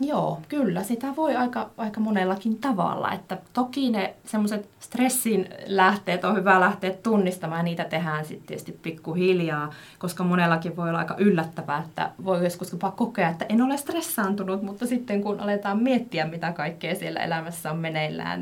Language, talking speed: Finnish, 155 wpm